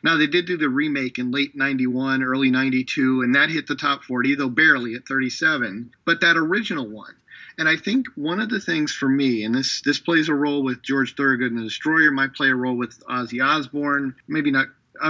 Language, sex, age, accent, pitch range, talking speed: English, male, 40-59, American, 125-160 Hz, 220 wpm